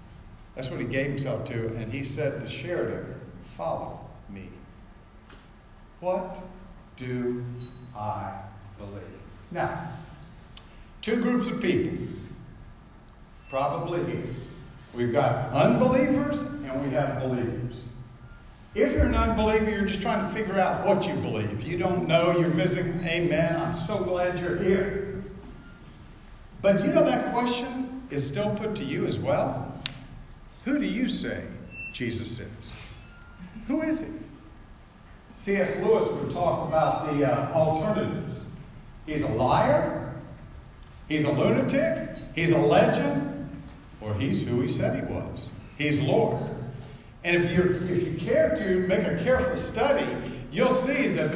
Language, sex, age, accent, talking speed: English, male, 60-79, American, 135 wpm